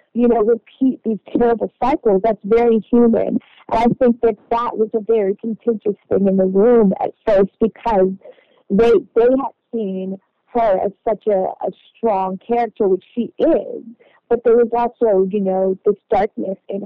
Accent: American